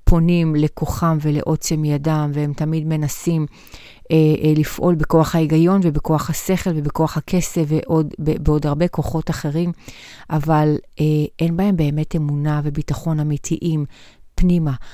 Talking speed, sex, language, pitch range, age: 120 wpm, female, Hebrew, 150-175 Hz, 30-49